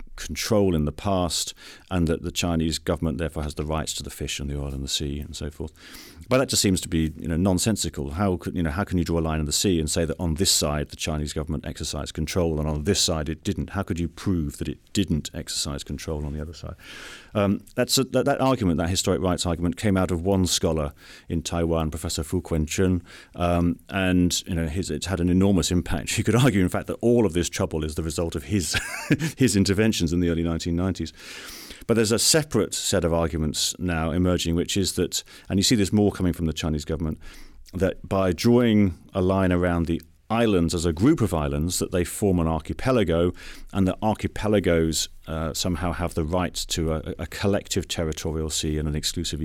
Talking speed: 225 wpm